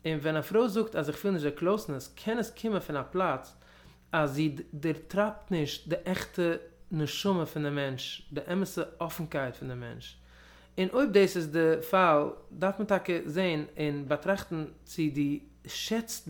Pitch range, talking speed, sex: 145-180 Hz, 175 wpm, male